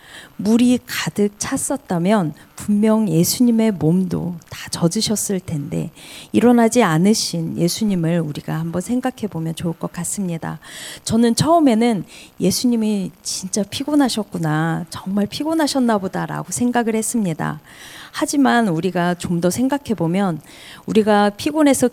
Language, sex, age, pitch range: Korean, female, 40-59, 165-225 Hz